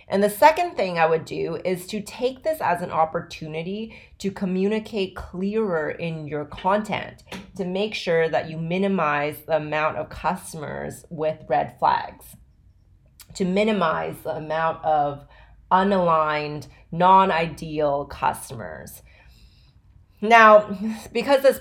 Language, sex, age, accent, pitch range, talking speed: English, female, 30-49, American, 155-190 Hz, 120 wpm